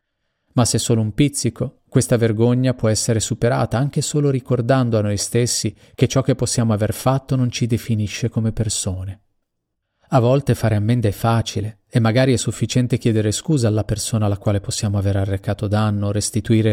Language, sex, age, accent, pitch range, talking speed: Italian, male, 30-49, native, 105-120 Hz, 175 wpm